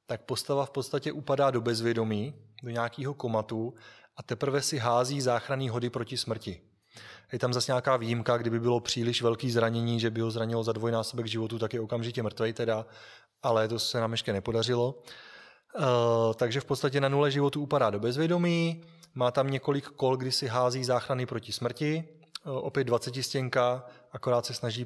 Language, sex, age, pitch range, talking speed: Czech, male, 20-39, 115-135 Hz, 170 wpm